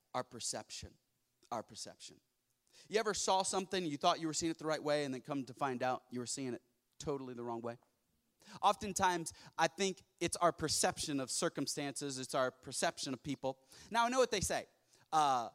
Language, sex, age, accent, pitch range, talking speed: English, male, 30-49, American, 130-165 Hz, 195 wpm